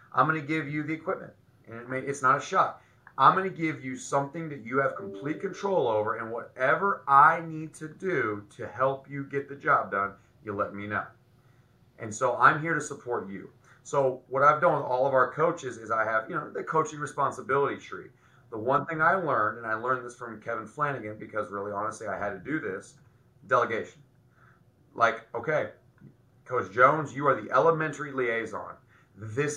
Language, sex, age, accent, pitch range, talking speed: English, male, 30-49, American, 110-145 Hz, 195 wpm